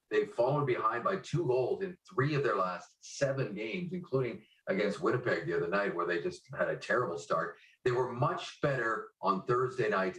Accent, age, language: American, 40-59, English